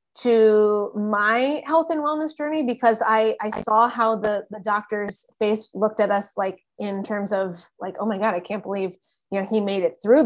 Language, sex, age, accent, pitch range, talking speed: English, female, 20-39, American, 200-220 Hz, 205 wpm